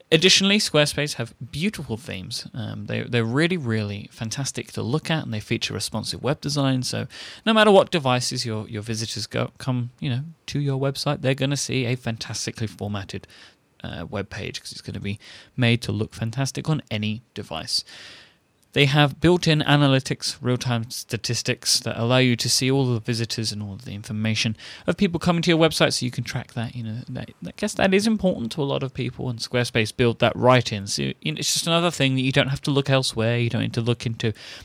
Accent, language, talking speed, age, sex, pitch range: British, English, 210 wpm, 30-49, male, 115-140 Hz